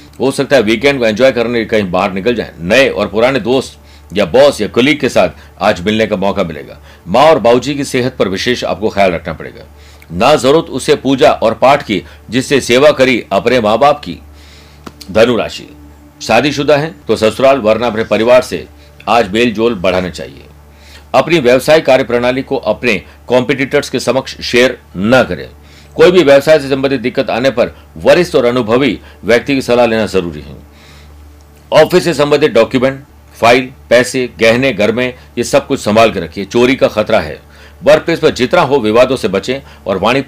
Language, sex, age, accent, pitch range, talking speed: Hindi, male, 60-79, native, 85-135 Hz, 175 wpm